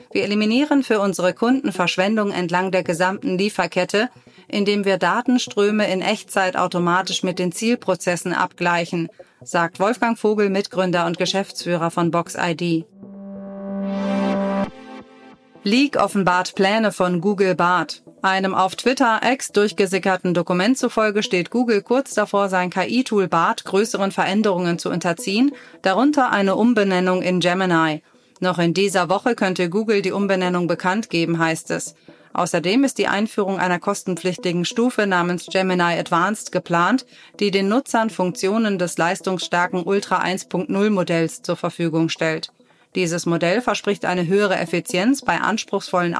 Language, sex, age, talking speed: German, female, 30-49, 130 wpm